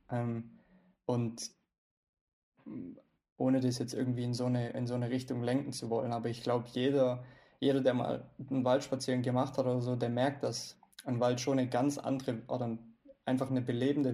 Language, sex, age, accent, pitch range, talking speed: German, male, 20-39, German, 120-130 Hz, 180 wpm